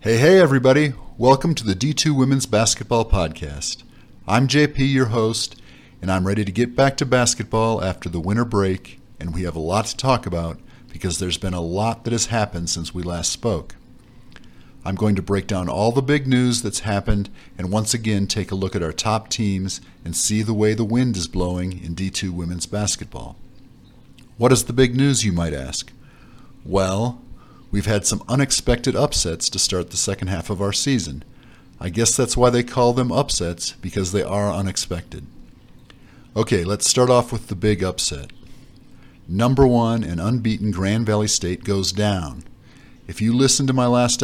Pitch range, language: 95-120 Hz, English